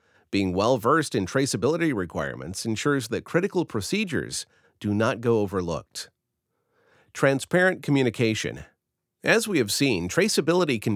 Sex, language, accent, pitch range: male, English, American, 105-155 Hz